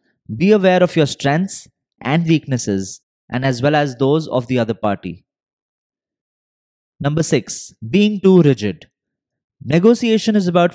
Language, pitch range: English, 120-165 Hz